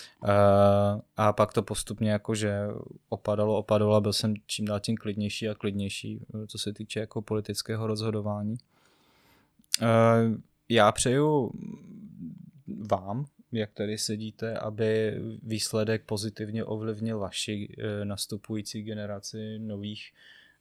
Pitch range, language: 105-110 Hz, Czech